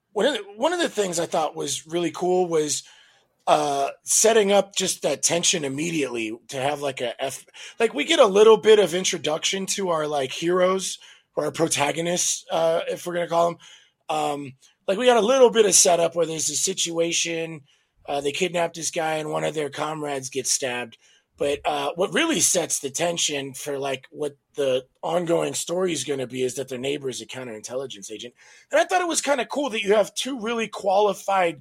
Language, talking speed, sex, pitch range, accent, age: English, 205 wpm, male, 140-190 Hz, American, 30-49